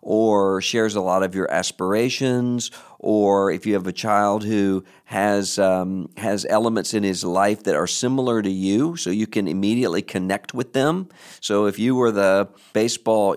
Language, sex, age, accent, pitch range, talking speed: English, male, 50-69, American, 95-110 Hz, 175 wpm